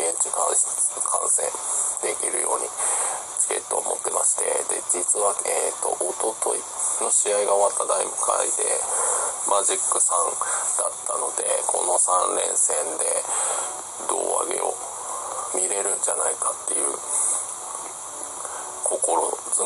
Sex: male